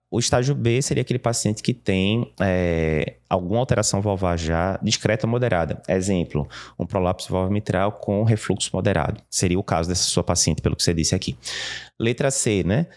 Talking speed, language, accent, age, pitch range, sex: 175 wpm, Portuguese, Brazilian, 20-39, 90-125 Hz, male